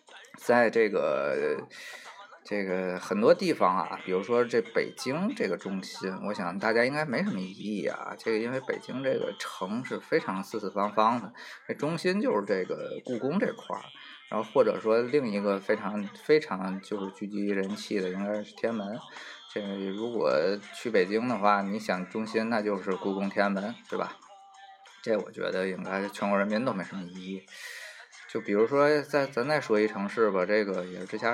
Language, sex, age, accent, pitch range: Chinese, male, 20-39, native, 100-150 Hz